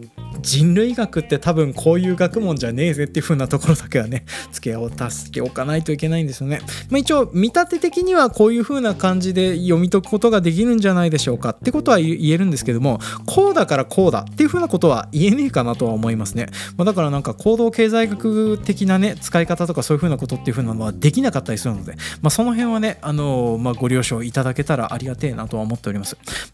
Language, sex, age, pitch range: Japanese, male, 20-39, 130-215 Hz